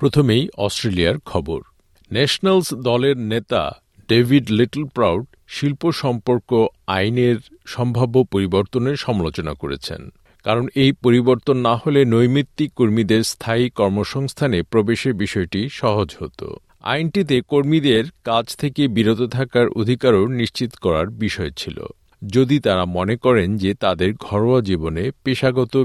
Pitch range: 100-130 Hz